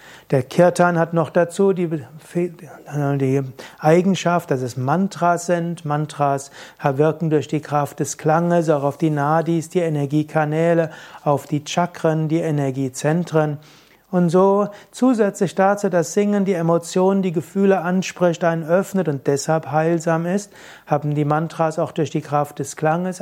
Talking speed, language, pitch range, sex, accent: 145 wpm, German, 150-175 Hz, male, German